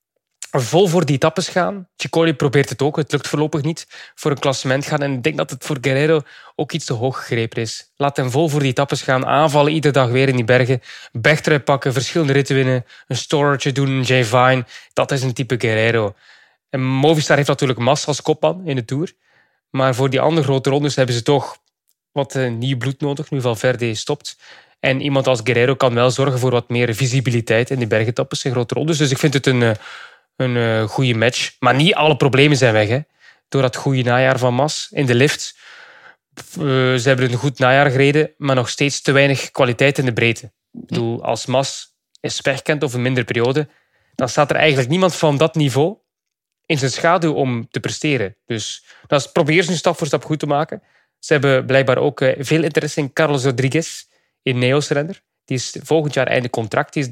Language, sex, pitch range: English, male, 130-155 Hz